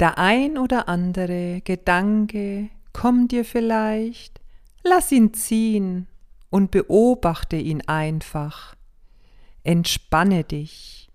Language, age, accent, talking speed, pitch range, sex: German, 40-59, German, 90 wpm, 155-220 Hz, female